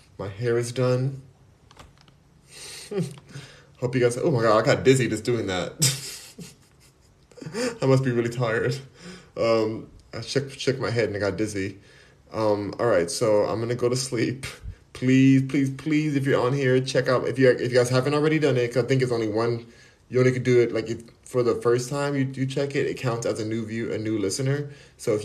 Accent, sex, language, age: American, male, English, 20-39